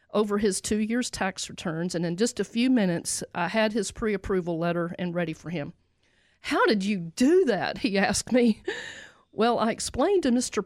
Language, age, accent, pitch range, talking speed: English, 50-69, American, 180-235 Hz, 190 wpm